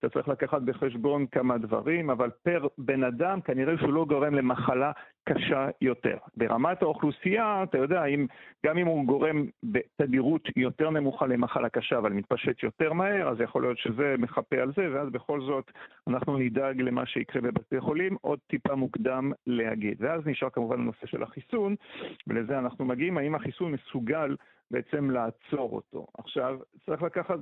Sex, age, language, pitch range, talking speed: male, 50-69, Hebrew, 125-150 Hz, 160 wpm